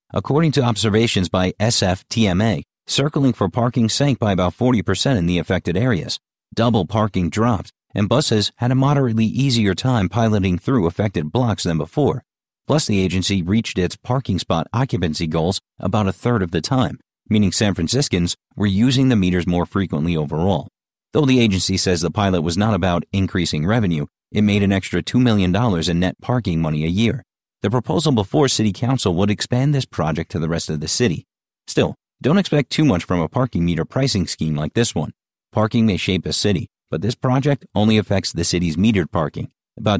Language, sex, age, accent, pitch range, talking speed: English, male, 40-59, American, 90-120 Hz, 185 wpm